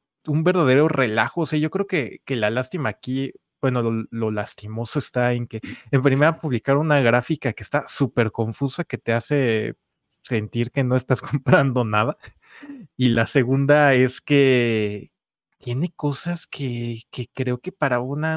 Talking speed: 165 wpm